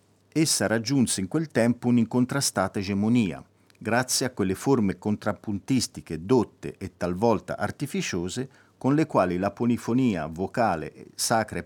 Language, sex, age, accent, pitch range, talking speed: Italian, male, 50-69, native, 95-130 Hz, 125 wpm